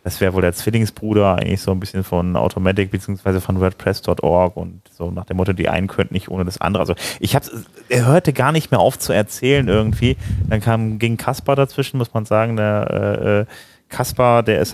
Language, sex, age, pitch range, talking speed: German, male, 30-49, 95-110 Hz, 210 wpm